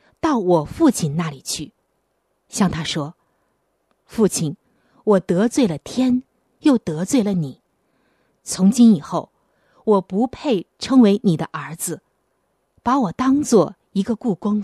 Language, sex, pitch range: Chinese, female, 165-245 Hz